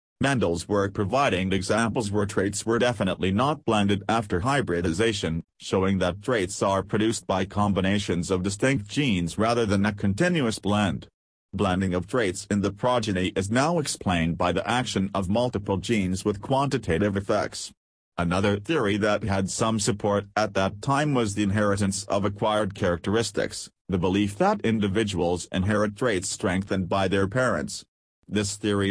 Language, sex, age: English, male, 40-59